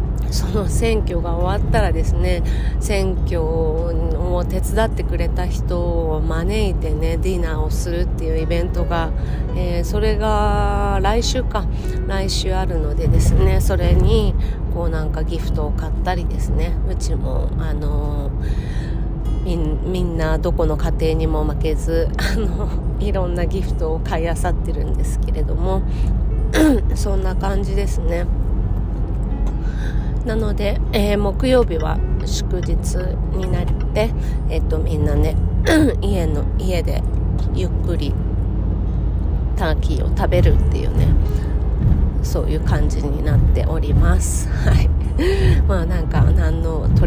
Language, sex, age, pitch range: Japanese, female, 30-49, 75-95 Hz